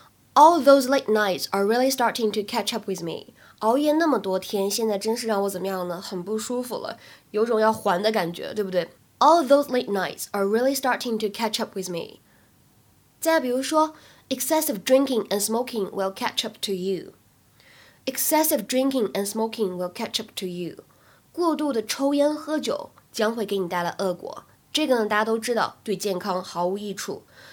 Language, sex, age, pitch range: Chinese, female, 10-29, 195-260 Hz